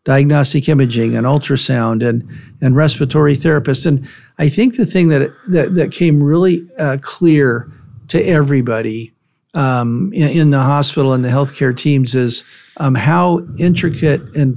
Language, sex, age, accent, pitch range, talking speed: English, male, 50-69, American, 130-155 Hz, 150 wpm